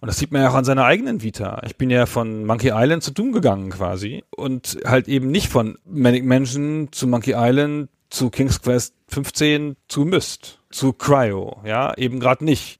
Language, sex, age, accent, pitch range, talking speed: German, male, 40-59, German, 115-145 Hz, 195 wpm